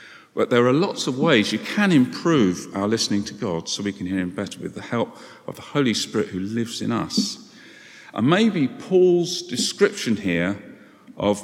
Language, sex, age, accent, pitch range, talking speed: English, male, 50-69, British, 100-155 Hz, 190 wpm